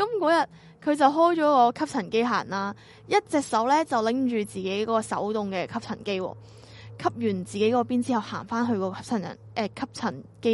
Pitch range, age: 165-235 Hz, 20-39